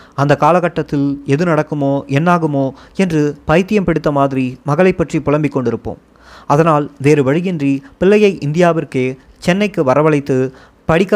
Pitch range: 135-170 Hz